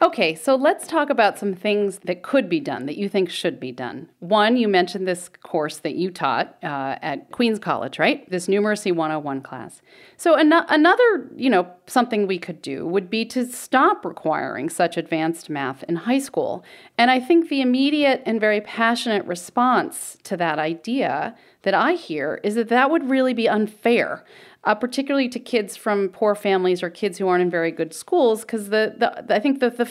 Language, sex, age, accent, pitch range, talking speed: English, female, 40-59, American, 170-235 Hz, 195 wpm